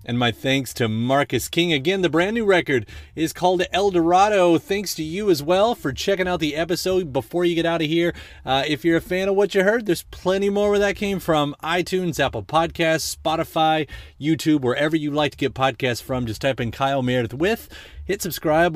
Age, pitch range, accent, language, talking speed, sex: 30-49, 125-175 Hz, American, English, 215 wpm, male